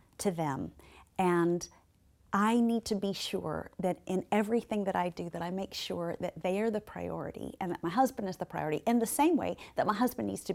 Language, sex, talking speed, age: English, female, 220 wpm, 40-59